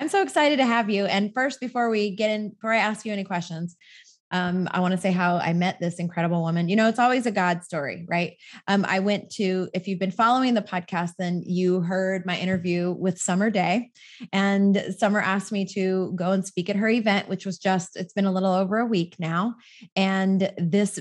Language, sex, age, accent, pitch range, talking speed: English, female, 20-39, American, 180-220 Hz, 225 wpm